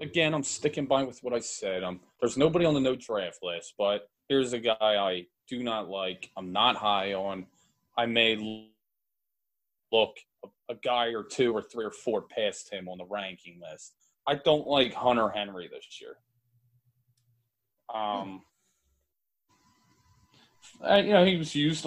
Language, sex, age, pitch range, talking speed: English, male, 20-39, 110-135 Hz, 160 wpm